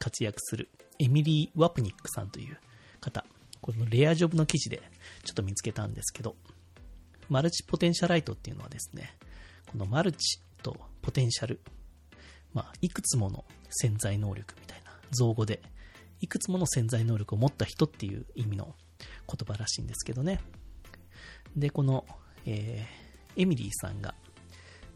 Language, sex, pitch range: Japanese, male, 95-140 Hz